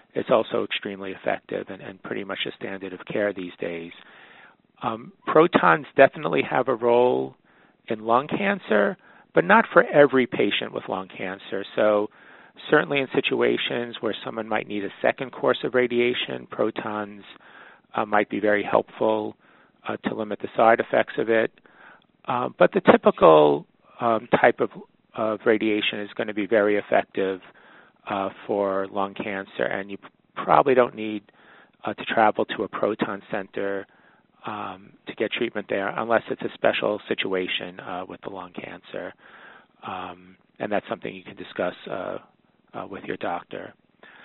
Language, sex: English, male